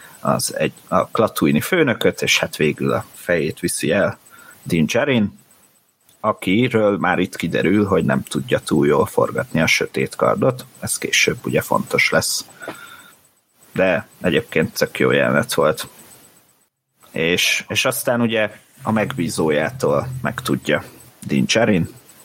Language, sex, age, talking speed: Hungarian, male, 30-49, 125 wpm